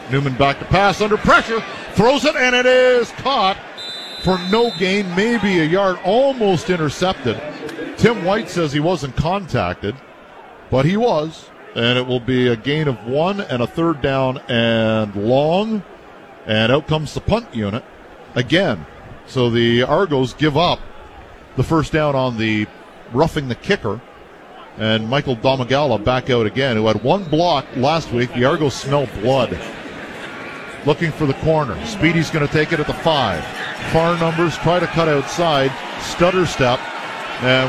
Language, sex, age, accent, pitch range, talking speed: English, male, 50-69, American, 125-175 Hz, 160 wpm